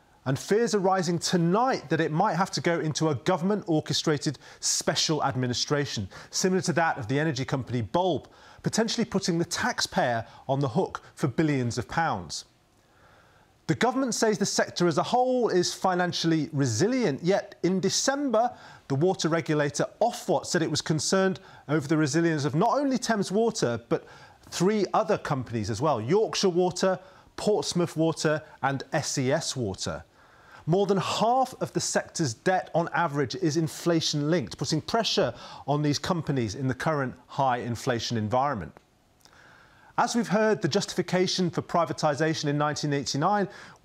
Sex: male